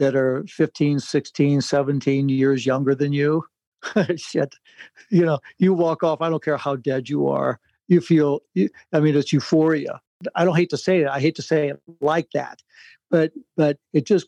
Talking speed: 195 wpm